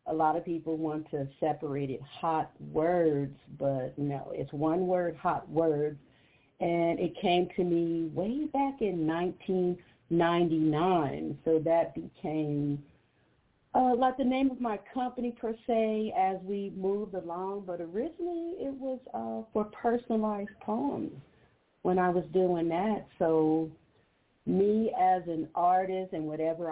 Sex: female